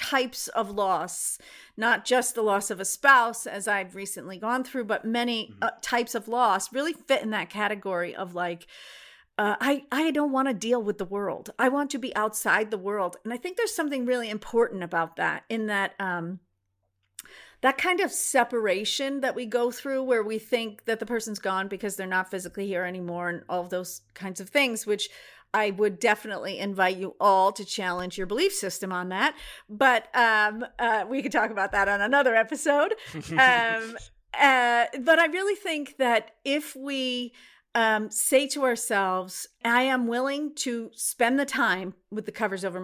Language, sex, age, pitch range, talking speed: English, female, 40-59, 190-255 Hz, 185 wpm